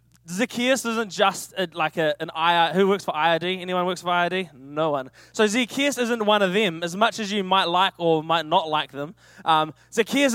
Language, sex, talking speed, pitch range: English, male, 225 wpm, 165-215 Hz